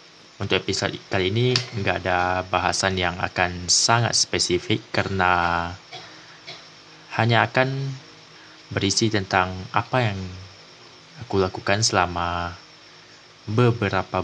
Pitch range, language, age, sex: 95-135 Hz, Indonesian, 20-39, male